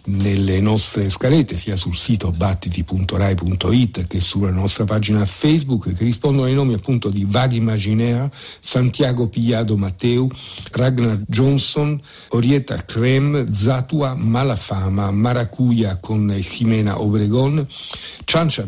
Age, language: 60-79, Italian